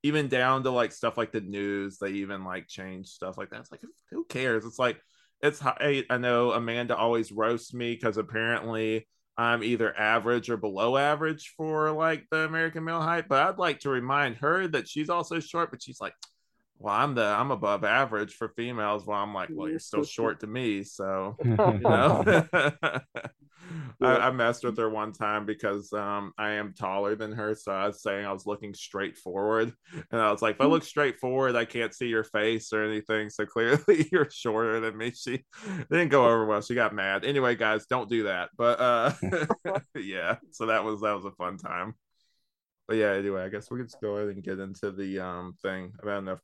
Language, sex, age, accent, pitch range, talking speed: English, male, 20-39, American, 105-135 Hz, 210 wpm